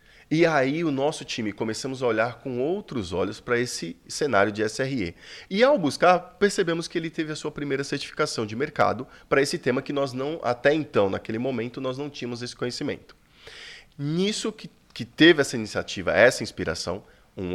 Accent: Brazilian